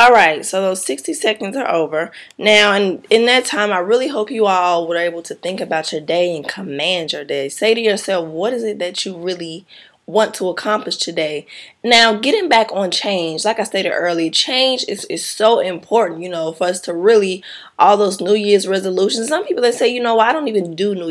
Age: 20-39